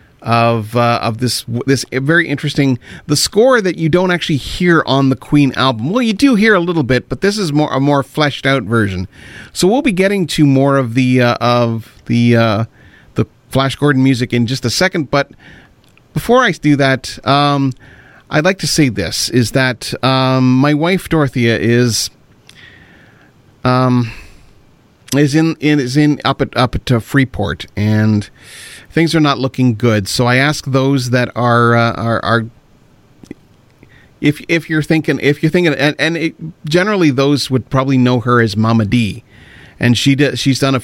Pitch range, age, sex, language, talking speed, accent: 115-145 Hz, 40-59, male, English, 180 wpm, American